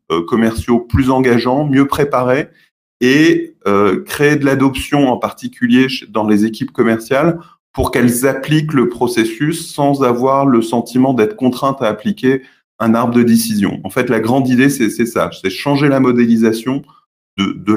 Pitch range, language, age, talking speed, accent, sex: 105-135 Hz, French, 20-39, 160 wpm, French, male